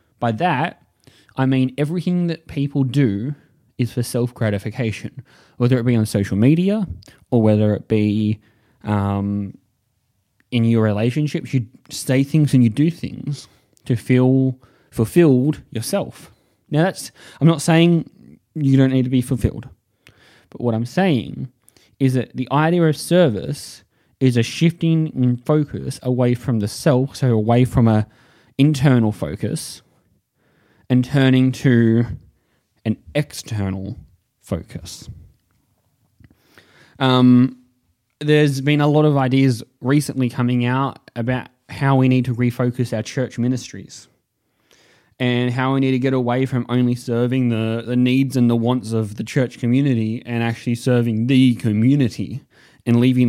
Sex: male